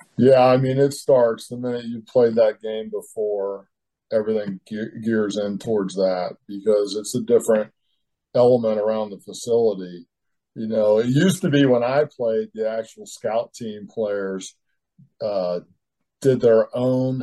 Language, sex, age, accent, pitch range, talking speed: English, male, 50-69, American, 105-130 Hz, 155 wpm